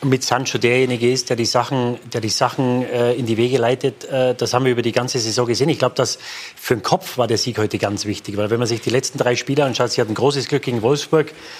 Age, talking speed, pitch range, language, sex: 30-49, 270 wpm, 125-160 Hz, German, male